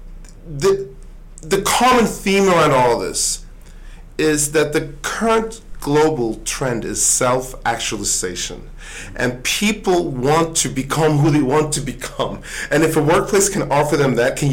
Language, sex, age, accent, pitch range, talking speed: English, male, 40-59, American, 120-155 Hz, 145 wpm